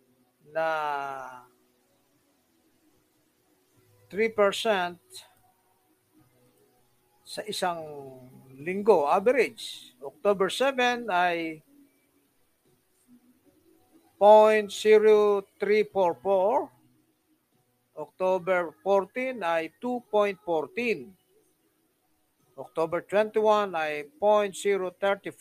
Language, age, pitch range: Filipino, 50-69, 150-215 Hz